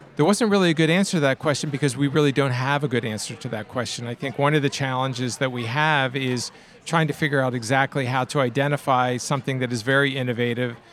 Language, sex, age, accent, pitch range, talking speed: English, male, 40-59, American, 125-150 Hz, 235 wpm